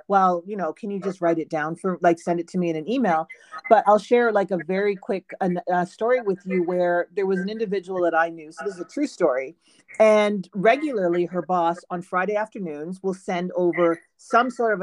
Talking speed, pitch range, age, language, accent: 225 wpm, 175-220 Hz, 40-59, English, American